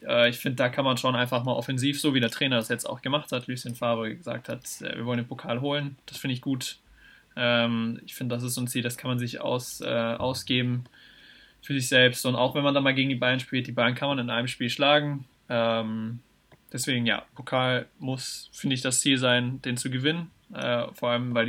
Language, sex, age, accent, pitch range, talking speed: German, male, 20-39, German, 115-135 Hz, 220 wpm